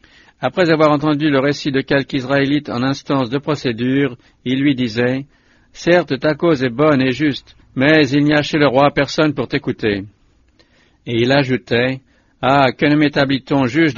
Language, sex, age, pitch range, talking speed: English, male, 60-79, 130-150 Hz, 170 wpm